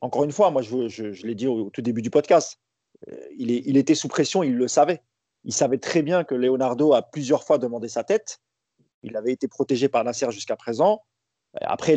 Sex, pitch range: male, 125-155 Hz